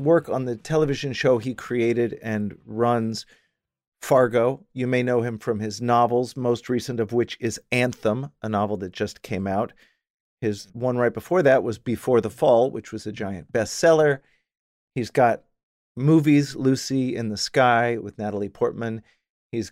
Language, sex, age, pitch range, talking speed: English, male, 40-59, 110-145 Hz, 165 wpm